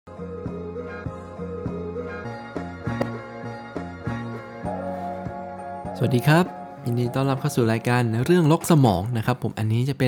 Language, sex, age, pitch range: Thai, male, 20-39, 105-135 Hz